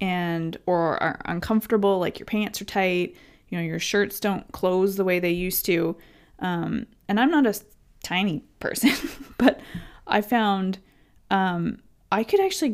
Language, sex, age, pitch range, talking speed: English, female, 20-39, 170-210 Hz, 160 wpm